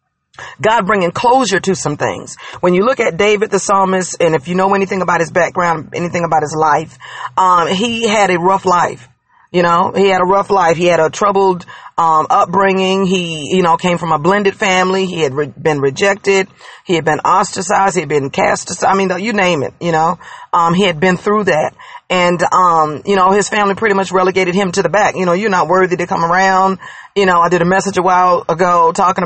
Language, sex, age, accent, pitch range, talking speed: English, female, 40-59, American, 175-210 Hz, 220 wpm